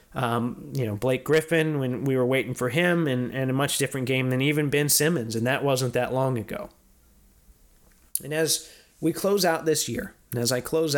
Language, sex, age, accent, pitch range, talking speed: English, male, 30-49, American, 115-145 Hz, 210 wpm